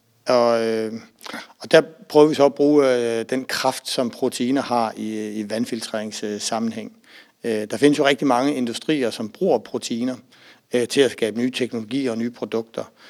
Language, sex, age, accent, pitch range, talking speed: Danish, male, 60-79, native, 110-130 Hz, 150 wpm